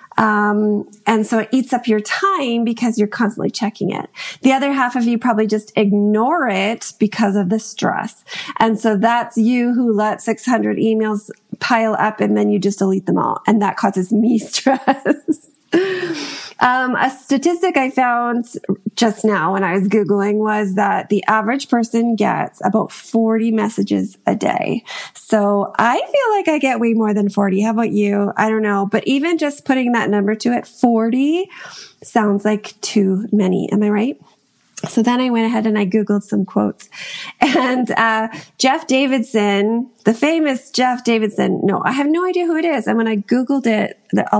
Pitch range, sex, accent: 210-265 Hz, female, American